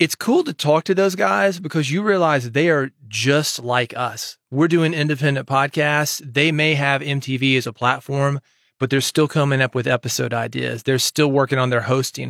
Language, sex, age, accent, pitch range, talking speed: English, male, 30-49, American, 120-145 Hz, 195 wpm